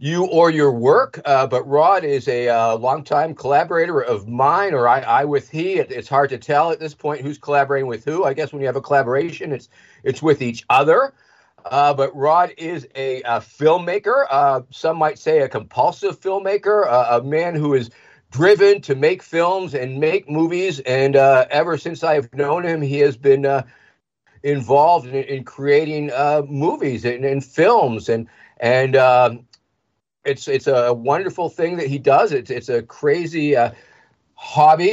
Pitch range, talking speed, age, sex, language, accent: 135-175 Hz, 180 wpm, 50-69, male, English, American